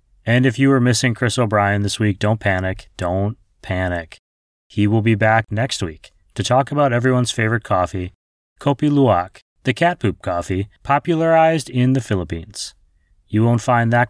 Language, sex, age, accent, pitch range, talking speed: English, male, 30-49, American, 95-125 Hz, 165 wpm